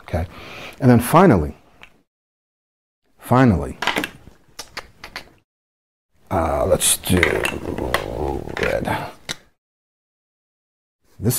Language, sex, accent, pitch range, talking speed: English, male, American, 90-125 Hz, 55 wpm